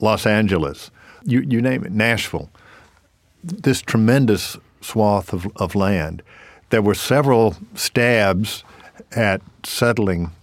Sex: male